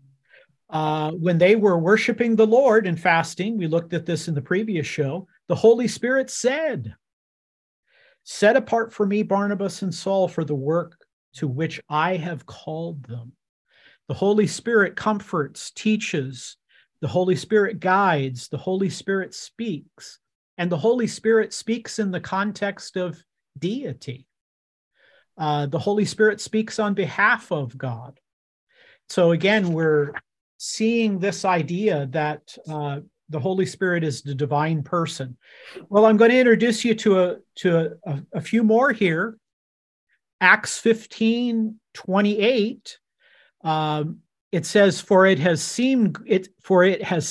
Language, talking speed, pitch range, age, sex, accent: English, 145 wpm, 155-215 Hz, 50-69, male, American